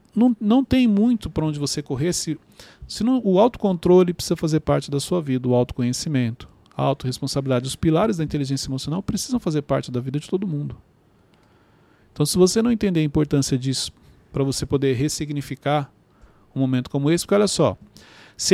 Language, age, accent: Portuguese, 40-59, Brazilian